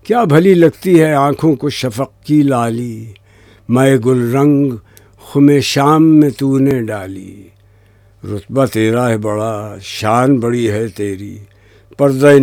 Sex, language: male, English